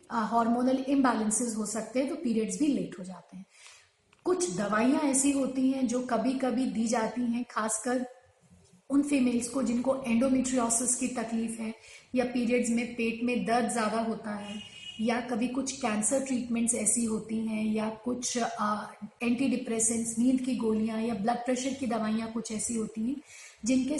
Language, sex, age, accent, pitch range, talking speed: Hindi, female, 30-49, native, 225-260 Hz, 170 wpm